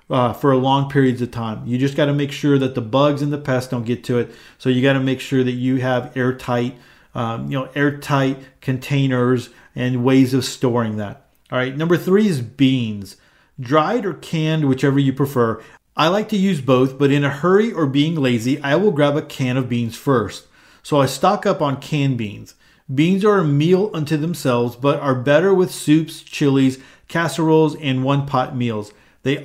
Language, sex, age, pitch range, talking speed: English, male, 40-59, 125-150 Hz, 205 wpm